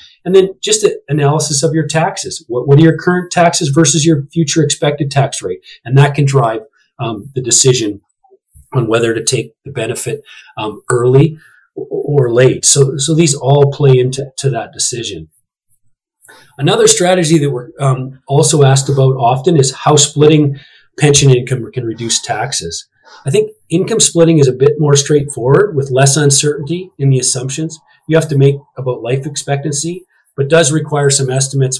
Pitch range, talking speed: 130-160 Hz, 170 wpm